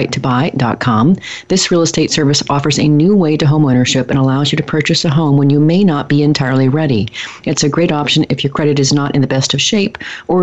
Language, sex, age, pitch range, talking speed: English, female, 40-59, 135-160 Hz, 235 wpm